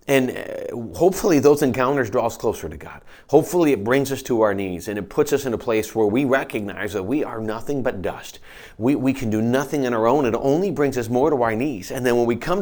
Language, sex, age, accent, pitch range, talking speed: English, male, 40-59, American, 110-140 Hz, 250 wpm